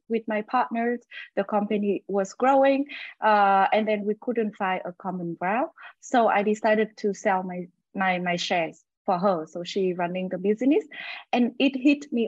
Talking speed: 175 wpm